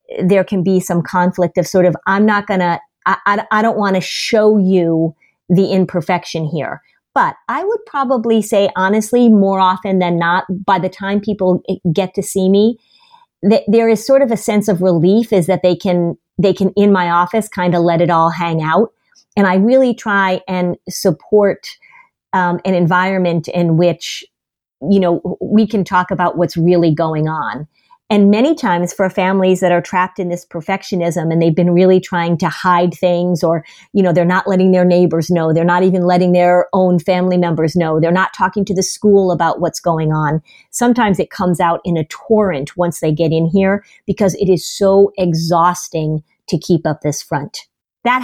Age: 40-59